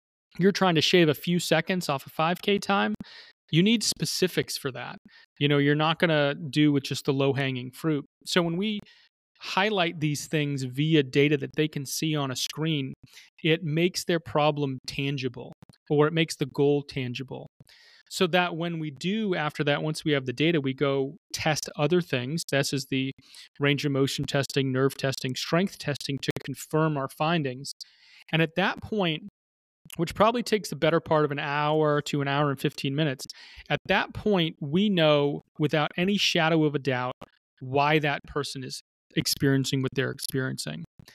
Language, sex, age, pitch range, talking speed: English, male, 30-49, 140-170 Hz, 180 wpm